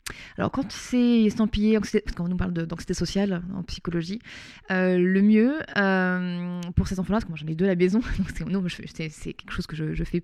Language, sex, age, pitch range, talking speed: French, female, 20-39, 175-215 Hz, 245 wpm